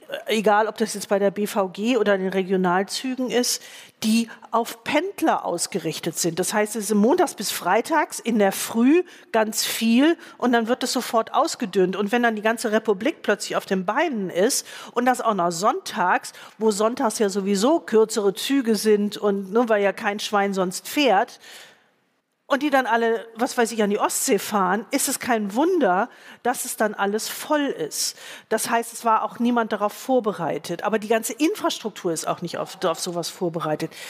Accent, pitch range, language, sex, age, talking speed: German, 200-255 Hz, German, female, 40-59, 185 wpm